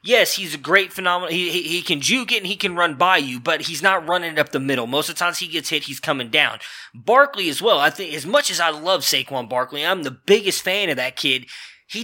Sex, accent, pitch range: male, American, 145-190 Hz